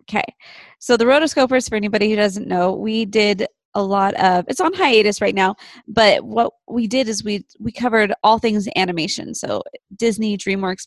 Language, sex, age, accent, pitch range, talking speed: English, female, 20-39, American, 205-245 Hz, 180 wpm